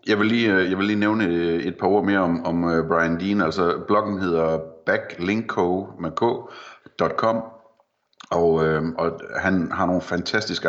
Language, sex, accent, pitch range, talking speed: Danish, male, native, 85-95 Hz, 145 wpm